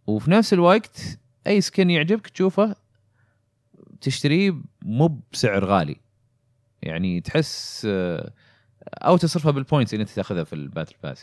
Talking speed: 120 wpm